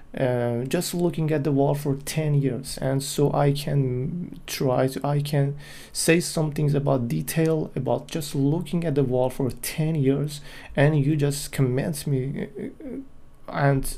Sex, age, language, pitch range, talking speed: male, 30-49, English, 140-160 Hz, 160 wpm